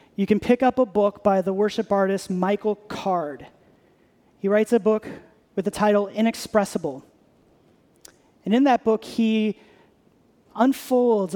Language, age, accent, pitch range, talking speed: English, 30-49, American, 180-230 Hz, 135 wpm